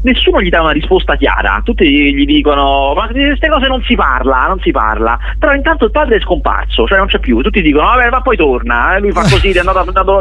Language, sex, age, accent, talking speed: Italian, male, 30-49, native, 240 wpm